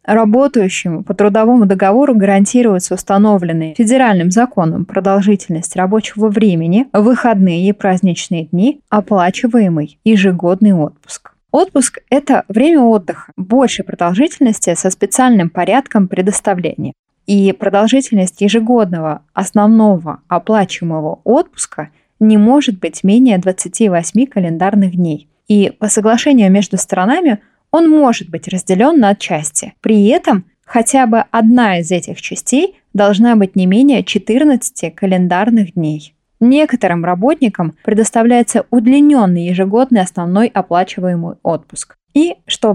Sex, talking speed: female, 110 wpm